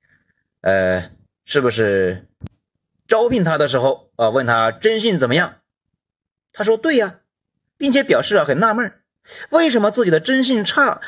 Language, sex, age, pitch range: Chinese, male, 30-49, 145-240 Hz